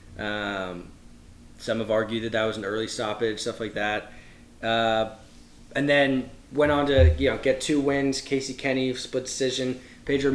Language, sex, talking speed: English, male, 170 wpm